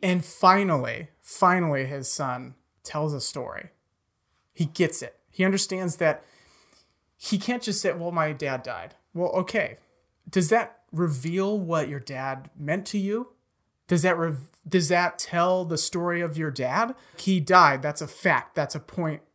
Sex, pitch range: male, 145-190 Hz